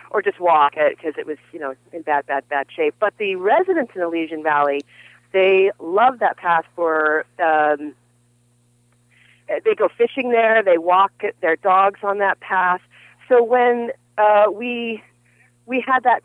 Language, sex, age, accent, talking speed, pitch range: English, female, 40-59, American, 165 wpm, 160-225 Hz